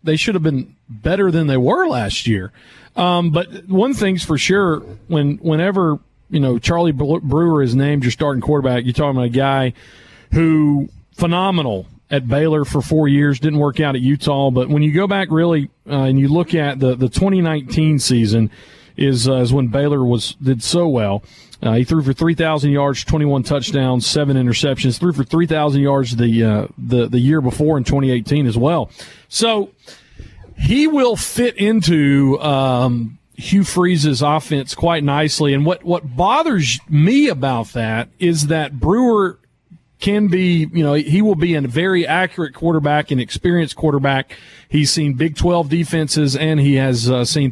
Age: 40-59